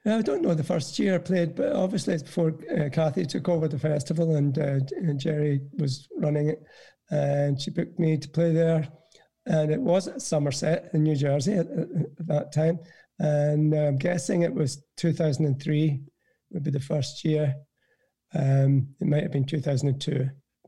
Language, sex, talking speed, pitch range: English, male, 175 wpm, 140-165 Hz